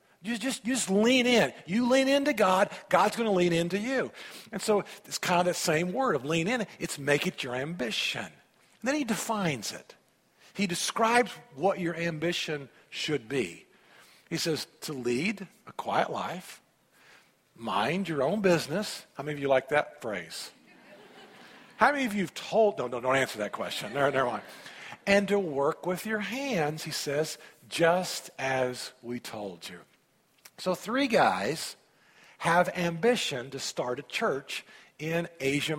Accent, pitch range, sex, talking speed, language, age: American, 155-215 Hz, male, 170 wpm, English, 50-69